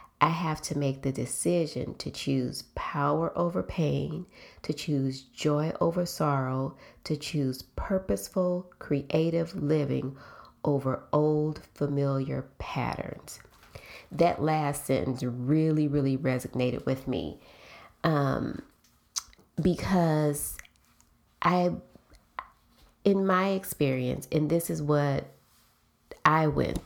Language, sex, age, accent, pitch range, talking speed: English, female, 30-49, American, 135-170 Hz, 100 wpm